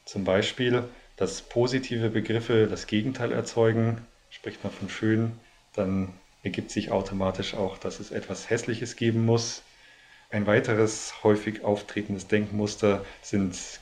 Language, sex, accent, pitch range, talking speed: German, male, German, 100-120 Hz, 125 wpm